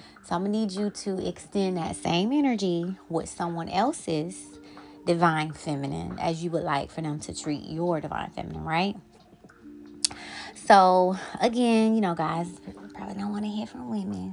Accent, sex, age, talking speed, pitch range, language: American, female, 20-39, 170 wpm, 160-215 Hz, English